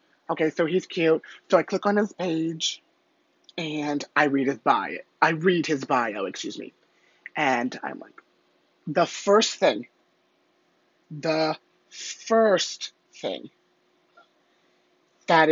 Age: 30-49